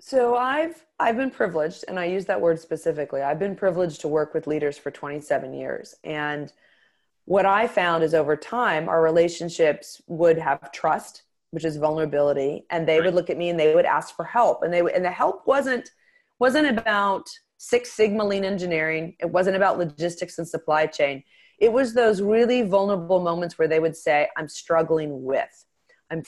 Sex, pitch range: female, 165-230 Hz